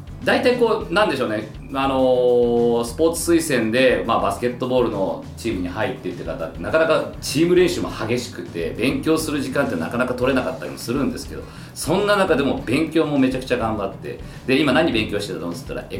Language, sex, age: Japanese, male, 40-59